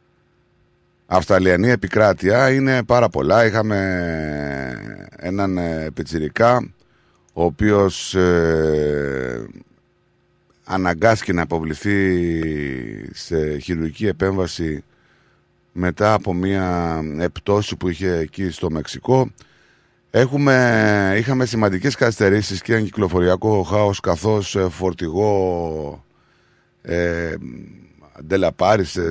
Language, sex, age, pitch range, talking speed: Greek, male, 30-49, 85-105 Hz, 80 wpm